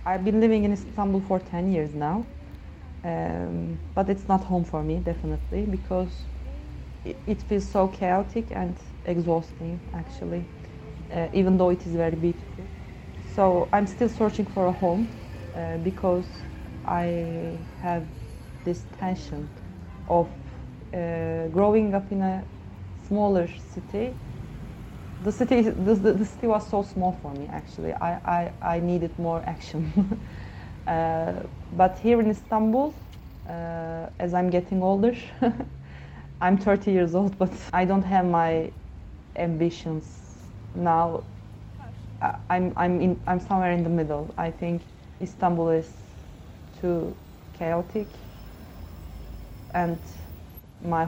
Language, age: English, 30-49